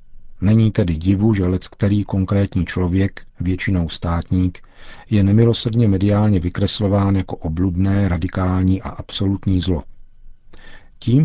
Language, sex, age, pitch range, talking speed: Czech, male, 50-69, 85-100 Hz, 110 wpm